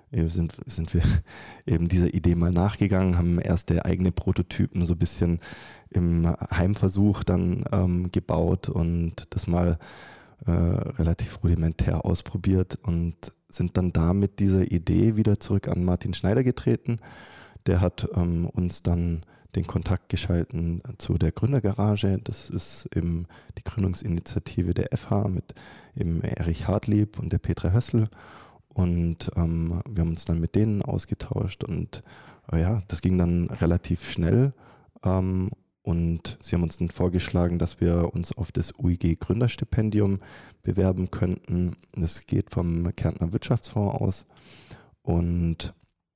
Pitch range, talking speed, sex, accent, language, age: 85-105 Hz, 135 wpm, male, German, German, 20-39